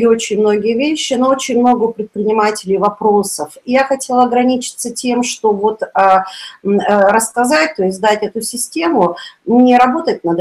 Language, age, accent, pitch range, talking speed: Russian, 40-59, native, 185-235 Hz, 145 wpm